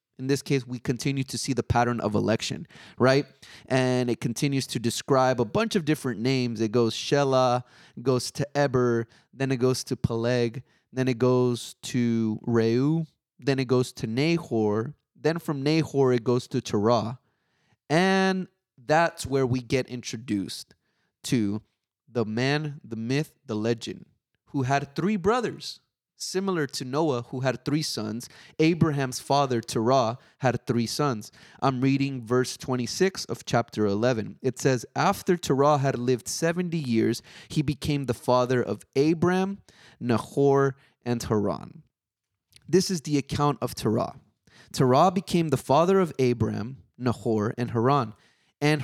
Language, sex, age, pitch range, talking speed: English, male, 20-39, 120-145 Hz, 150 wpm